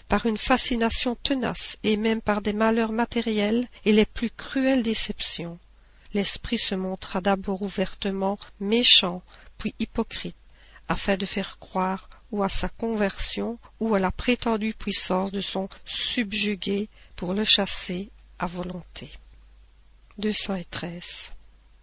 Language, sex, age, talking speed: French, female, 50-69, 125 wpm